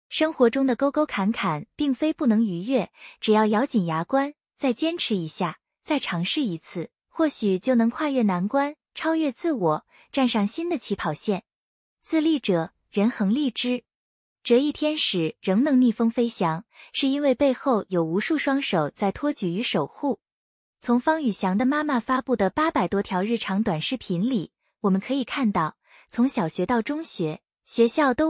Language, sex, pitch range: Chinese, female, 195-280 Hz